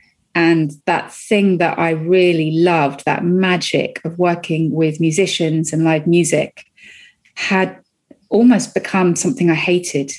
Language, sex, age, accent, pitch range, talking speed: English, female, 30-49, British, 160-195 Hz, 130 wpm